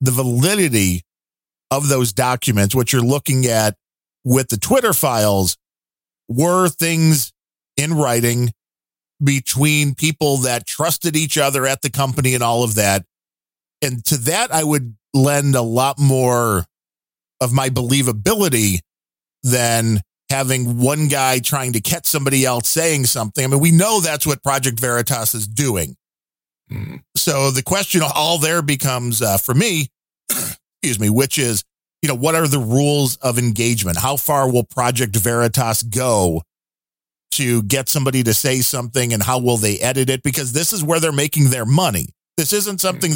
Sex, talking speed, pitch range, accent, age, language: male, 155 wpm, 110-145 Hz, American, 40-59, English